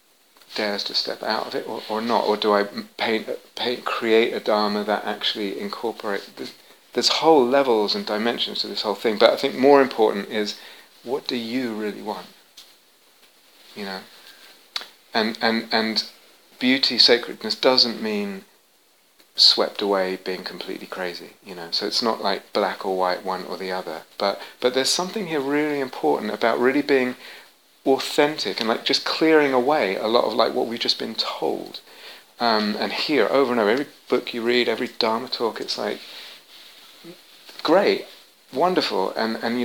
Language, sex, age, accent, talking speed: English, male, 30-49, British, 170 wpm